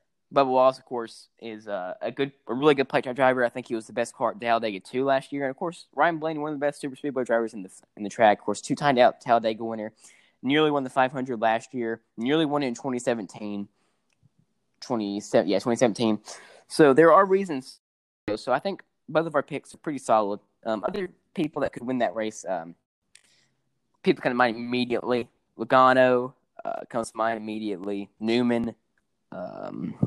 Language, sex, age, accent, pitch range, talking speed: English, male, 10-29, American, 110-135 Hz, 195 wpm